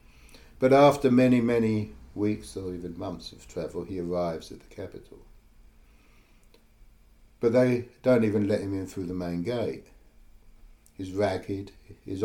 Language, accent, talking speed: English, British, 140 wpm